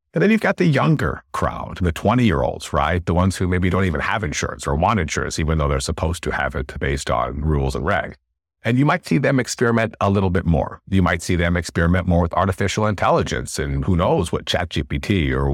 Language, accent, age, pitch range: English, American, 50-69, 75-105 Hz